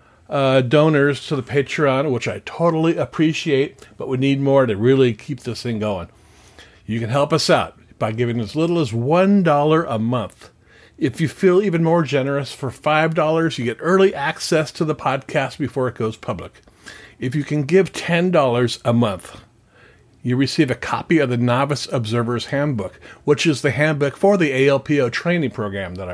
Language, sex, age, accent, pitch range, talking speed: English, male, 50-69, American, 125-160 Hz, 175 wpm